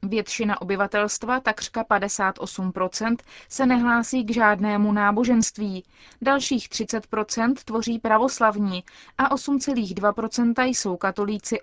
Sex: female